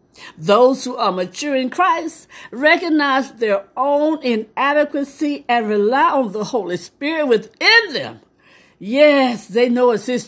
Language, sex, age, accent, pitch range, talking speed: English, female, 60-79, American, 205-275 Hz, 135 wpm